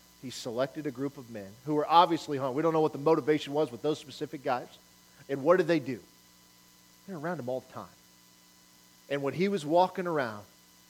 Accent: American